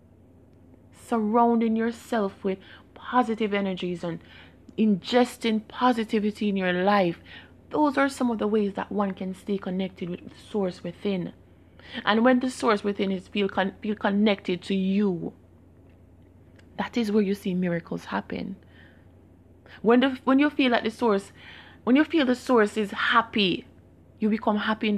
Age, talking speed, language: 20-39, 155 wpm, English